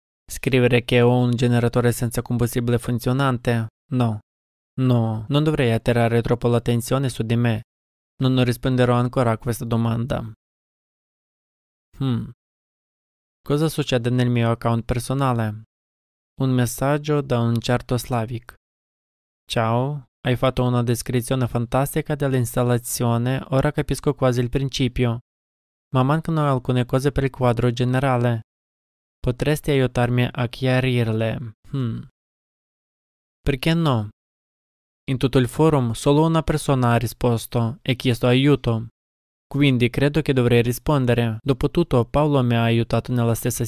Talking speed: 120 wpm